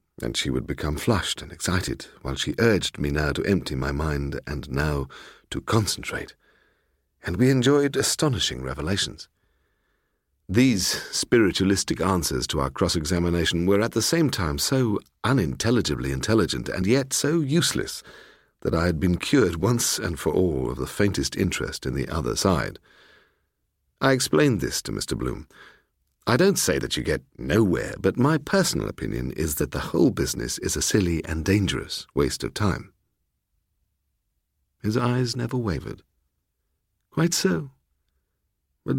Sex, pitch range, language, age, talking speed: male, 70-120 Hz, English, 50-69, 150 wpm